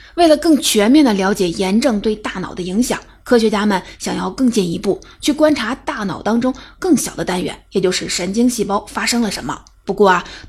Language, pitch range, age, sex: Chinese, 195-240 Hz, 20-39, female